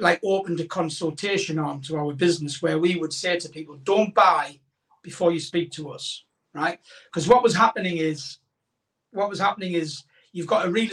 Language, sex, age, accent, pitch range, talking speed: English, male, 40-59, British, 155-180 Hz, 190 wpm